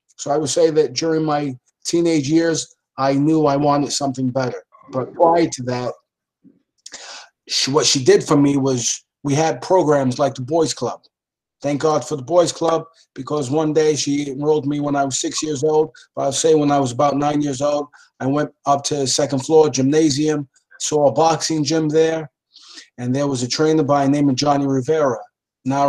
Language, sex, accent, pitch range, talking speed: English, male, American, 135-160 Hz, 200 wpm